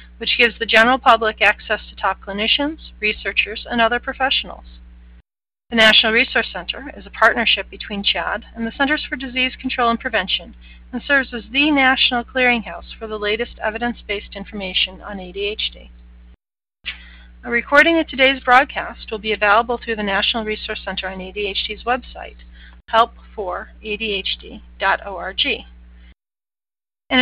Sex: female